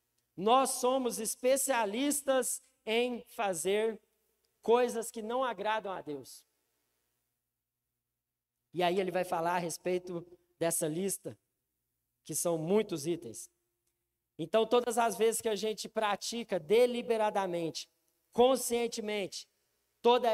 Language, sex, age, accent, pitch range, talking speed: Portuguese, male, 40-59, Brazilian, 155-210 Hz, 105 wpm